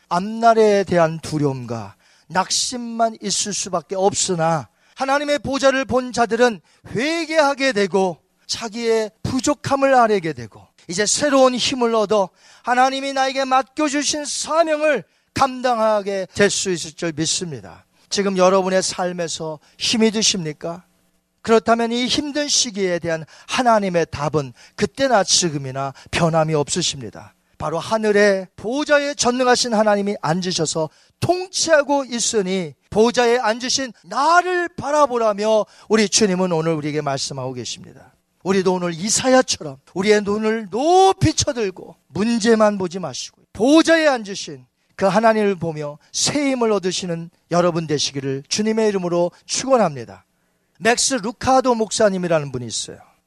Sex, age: male, 40-59